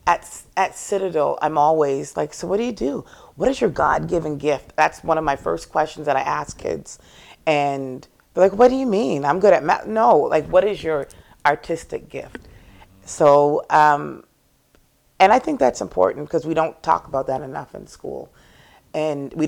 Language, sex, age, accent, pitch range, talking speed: English, female, 40-59, American, 140-160 Hz, 190 wpm